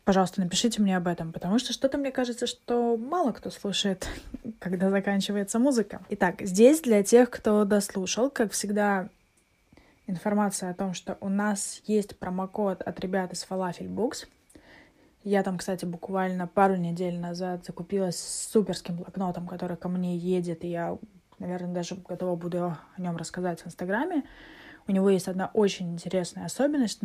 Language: Russian